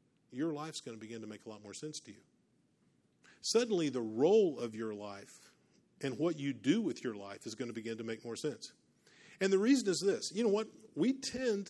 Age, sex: 50-69, male